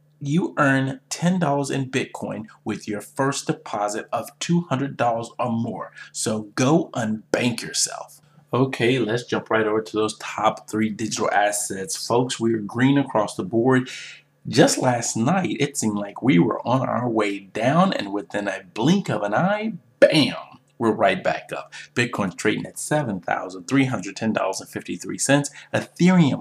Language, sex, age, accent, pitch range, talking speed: English, male, 30-49, American, 110-150 Hz, 145 wpm